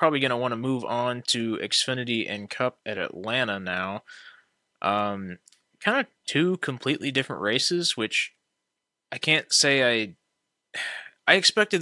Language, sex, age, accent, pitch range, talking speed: English, male, 20-39, American, 105-130 Hz, 135 wpm